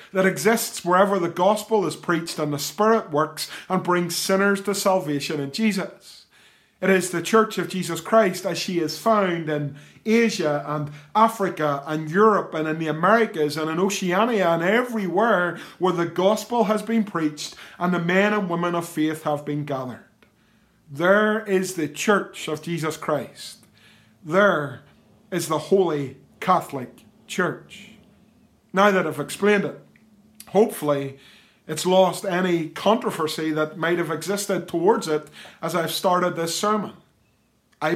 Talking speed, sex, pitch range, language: 150 wpm, male, 155-205 Hz, English